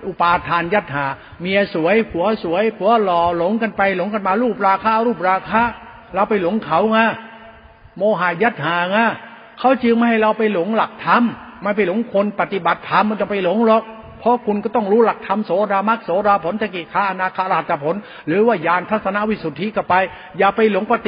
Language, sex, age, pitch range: Thai, male, 60-79, 190-225 Hz